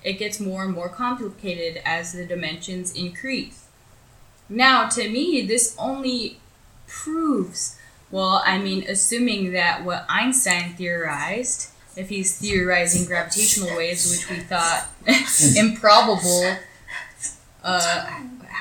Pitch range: 175-225 Hz